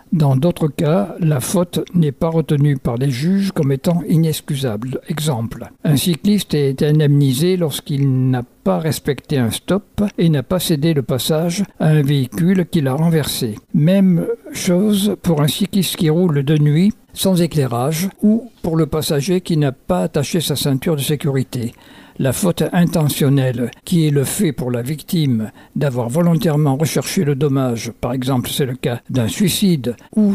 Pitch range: 135-170 Hz